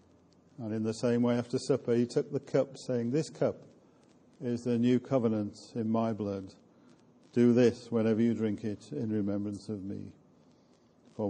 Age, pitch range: 50-69, 110-130 Hz